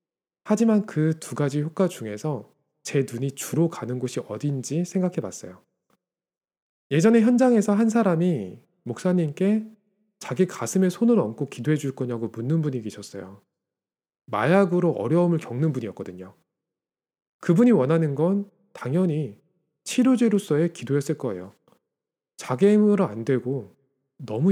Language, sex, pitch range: Korean, male, 135-200 Hz